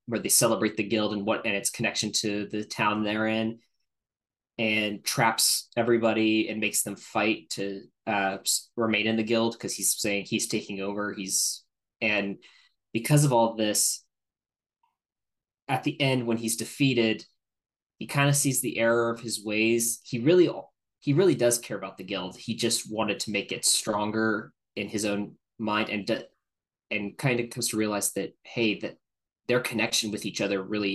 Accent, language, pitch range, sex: American, English, 105-120 Hz, male